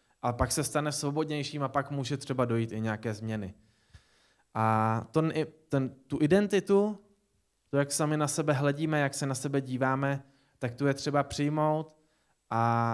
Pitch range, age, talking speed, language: 125-150 Hz, 20-39, 155 wpm, Czech